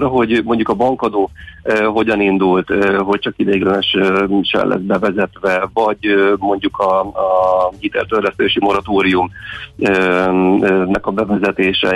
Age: 40-59